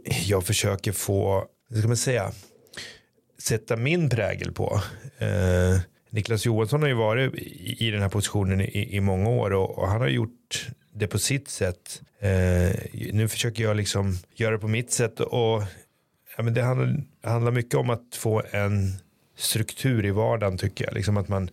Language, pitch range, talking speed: Swedish, 95-115 Hz, 175 wpm